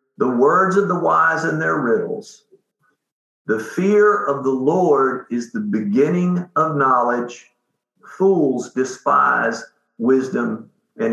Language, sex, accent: English, male, American